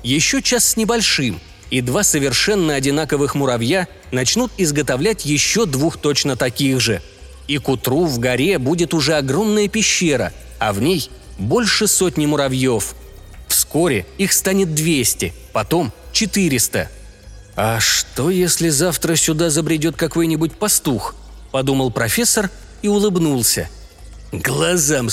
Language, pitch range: Russian, 125-185 Hz